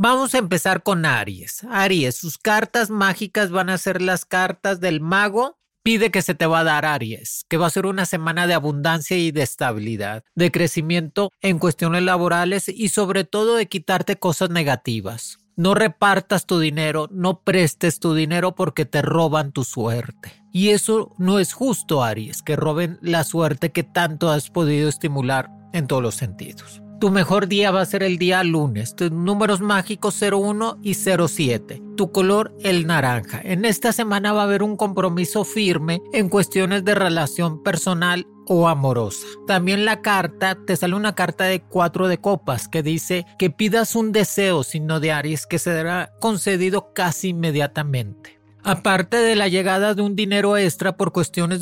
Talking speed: 175 wpm